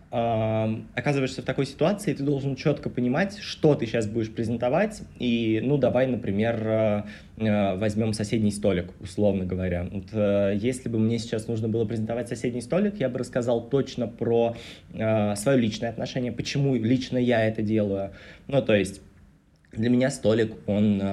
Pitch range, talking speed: 105-120 Hz, 150 wpm